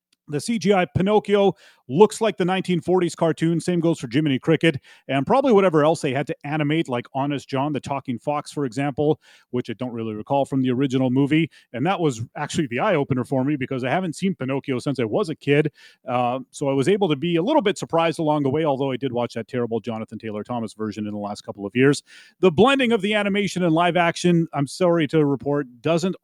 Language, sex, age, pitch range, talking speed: English, male, 30-49, 135-175 Hz, 225 wpm